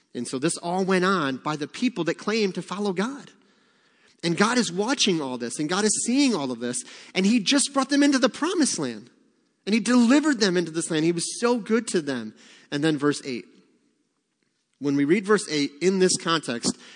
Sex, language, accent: male, English, American